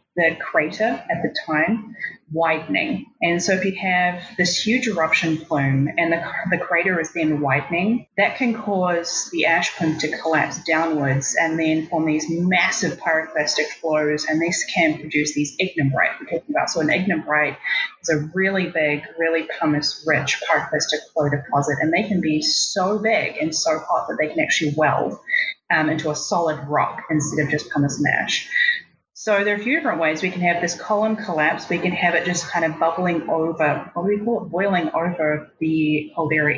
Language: English